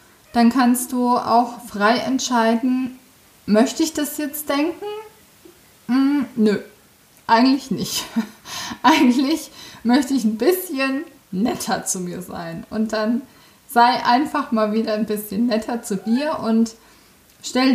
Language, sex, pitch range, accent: German, female, 215-260 Hz, German